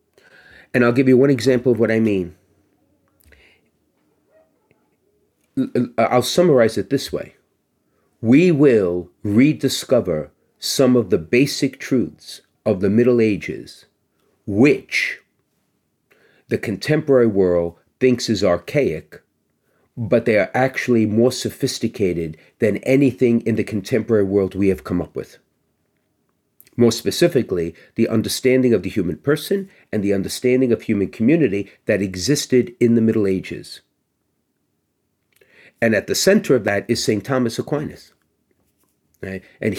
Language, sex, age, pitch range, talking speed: English, male, 40-59, 100-130 Hz, 125 wpm